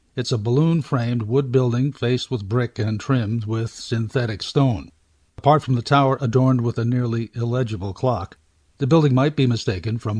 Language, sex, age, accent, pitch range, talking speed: English, male, 50-69, American, 110-145 Hz, 170 wpm